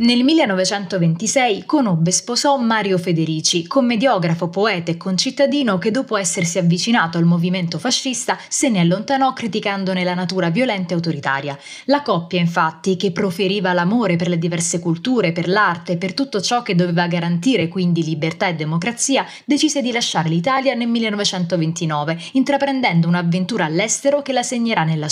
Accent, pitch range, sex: native, 175-235 Hz, female